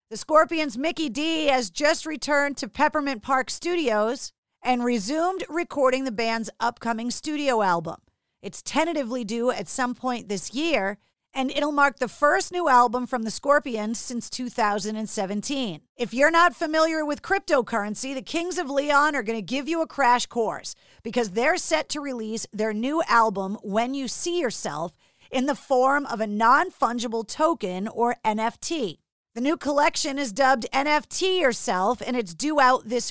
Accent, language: American, English